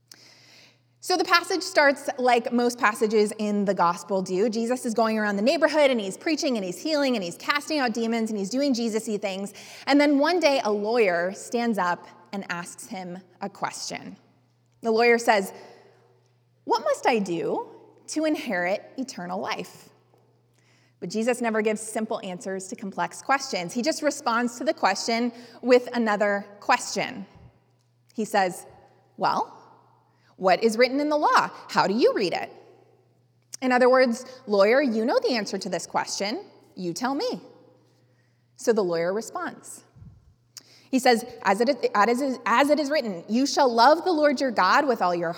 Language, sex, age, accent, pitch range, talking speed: English, female, 20-39, American, 185-260 Hz, 165 wpm